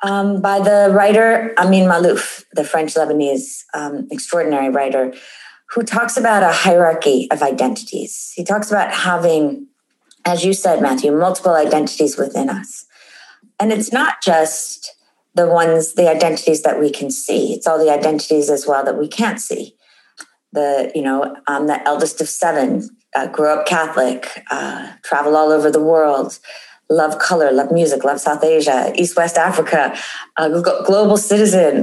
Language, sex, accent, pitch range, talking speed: English, female, American, 155-220 Hz, 160 wpm